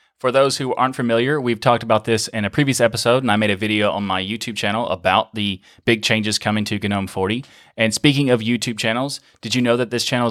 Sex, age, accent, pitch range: male, 20-39, American, 105-120 Hz